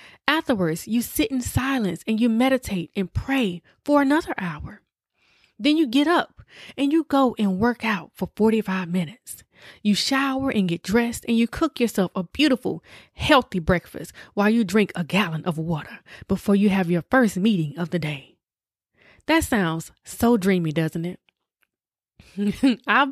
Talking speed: 160 wpm